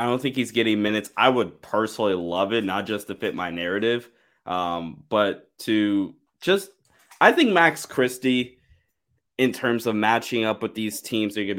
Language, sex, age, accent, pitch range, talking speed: English, male, 20-39, American, 95-135 Hz, 180 wpm